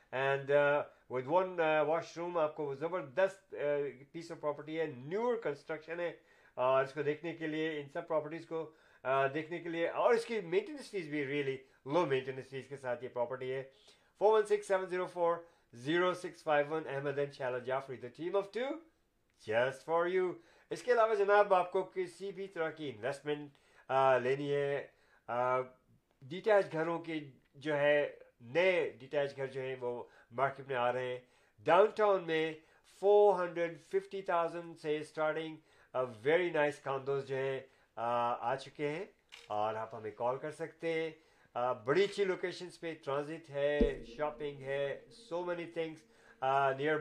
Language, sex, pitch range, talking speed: Urdu, male, 135-170 Hz, 120 wpm